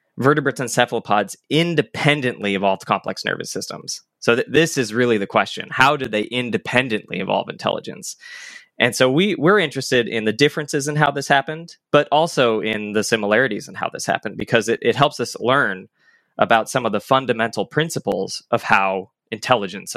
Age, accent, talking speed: 20-39, American, 170 wpm